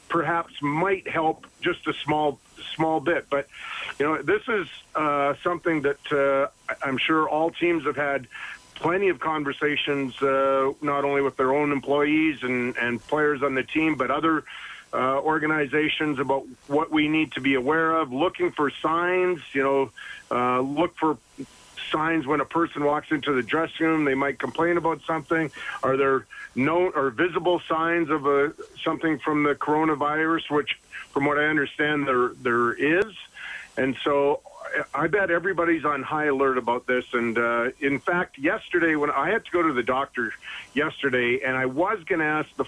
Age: 50-69